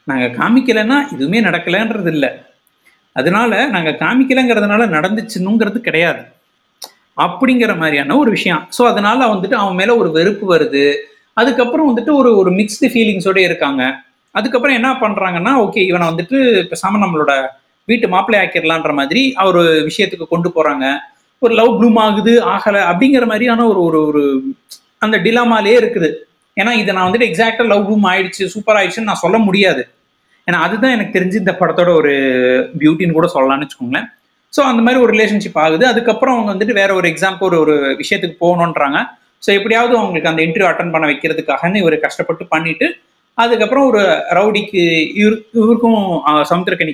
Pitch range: 165-230 Hz